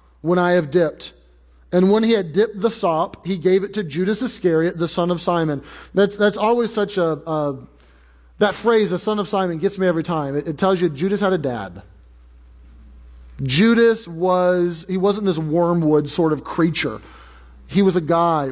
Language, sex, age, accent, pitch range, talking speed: English, male, 30-49, American, 150-190 Hz, 190 wpm